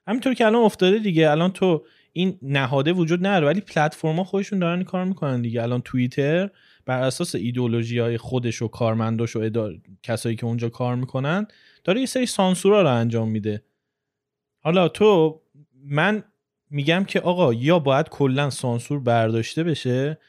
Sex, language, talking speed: male, Persian, 160 wpm